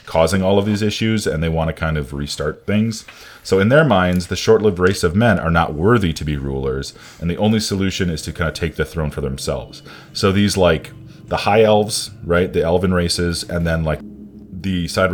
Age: 30-49